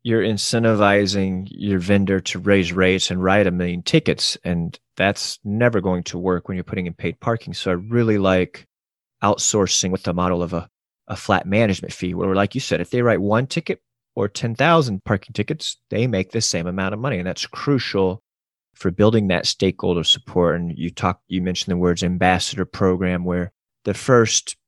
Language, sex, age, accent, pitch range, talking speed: English, male, 30-49, American, 90-110 Hz, 190 wpm